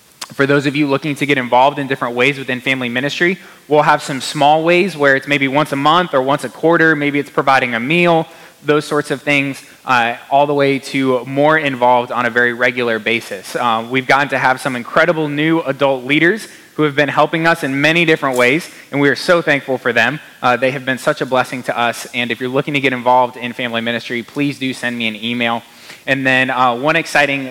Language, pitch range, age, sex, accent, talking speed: English, 125-150 Hz, 20-39, male, American, 230 wpm